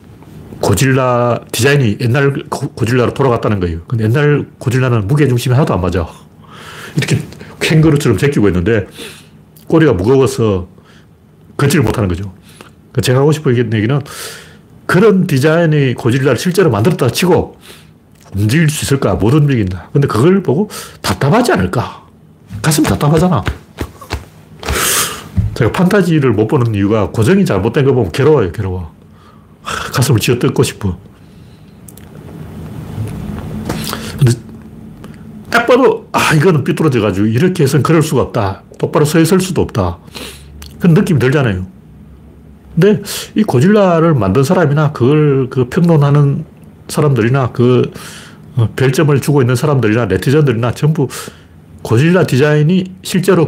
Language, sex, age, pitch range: Korean, male, 40-59, 110-155 Hz